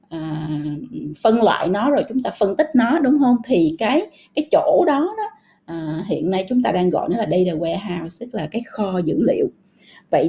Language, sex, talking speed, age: Vietnamese, female, 210 wpm, 20-39